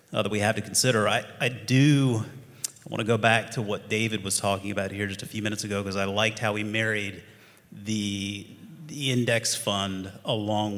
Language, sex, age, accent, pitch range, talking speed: English, male, 30-49, American, 100-120 Hz, 200 wpm